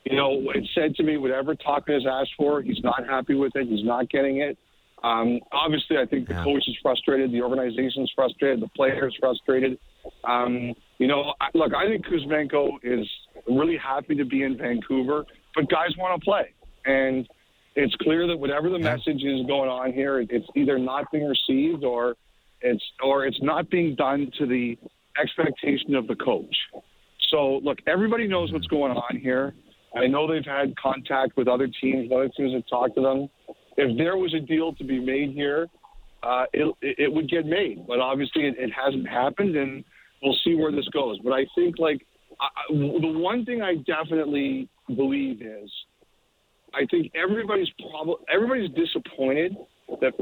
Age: 50-69